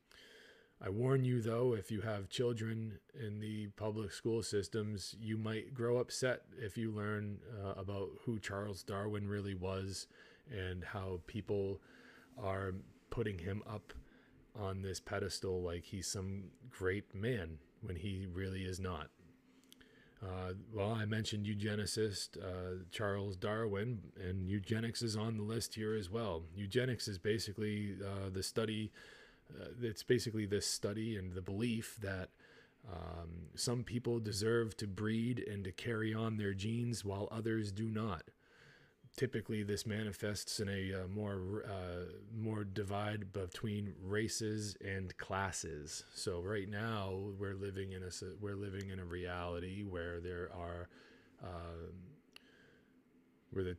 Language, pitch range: English, 95-110 Hz